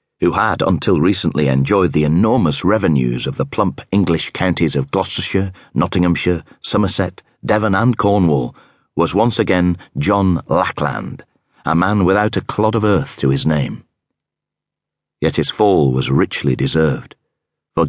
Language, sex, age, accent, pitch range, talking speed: English, male, 40-59, British, 75-95 Hz, 140 wpm